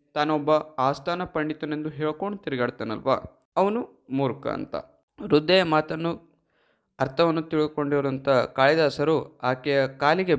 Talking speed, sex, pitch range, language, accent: 85 wpm, male, 130-170 Hz, Kannada, native